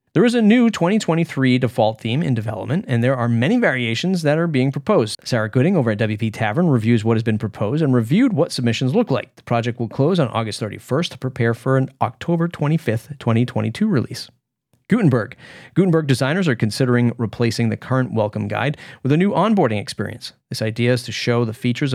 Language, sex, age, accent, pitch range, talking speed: English, male, 30-49, American, 115-150 Hz, 195 wpm